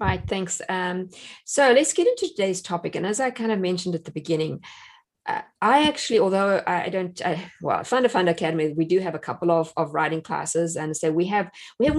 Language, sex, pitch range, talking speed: English, female, 160-215 Hz, 220 wpm